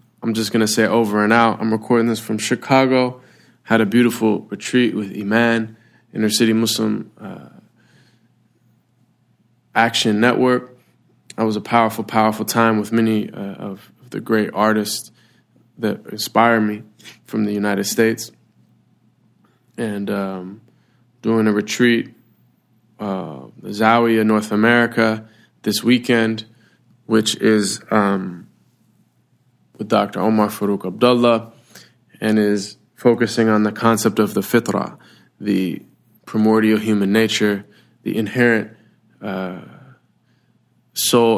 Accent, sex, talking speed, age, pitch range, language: American, male, 115 wpm, 20-39, 105-115 Hz, English